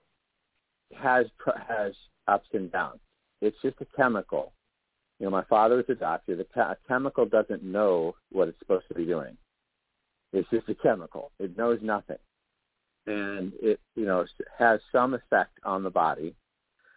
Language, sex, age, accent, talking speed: English, male, 50-69, American, 160 wpm